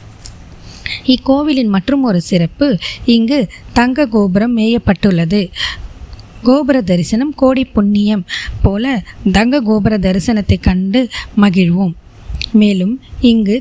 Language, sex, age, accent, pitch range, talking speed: Tamil, female, 20-39, native, 195-240 Hz, 90 wpm